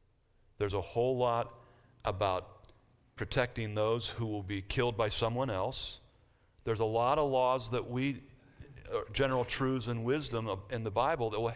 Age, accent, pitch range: 50-69, American, 105-130 Hz